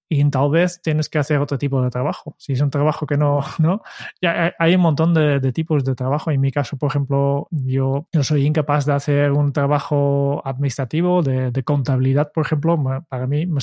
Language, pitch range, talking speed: Spanish, 145-170 Hz, 210 wpm